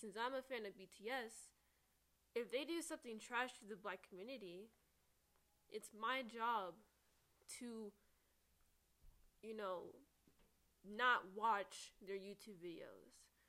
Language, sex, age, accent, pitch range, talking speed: English, female, 10-29, American, 195-230 Hz, 115 wpm